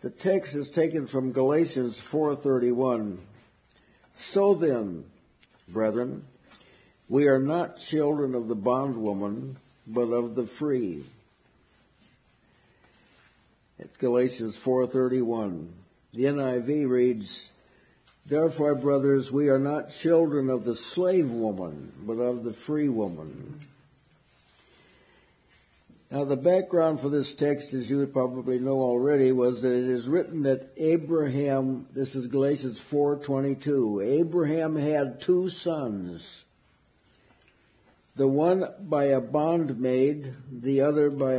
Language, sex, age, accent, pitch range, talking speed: English, male, 60-79, American, 120-145 Hz, 110 wpm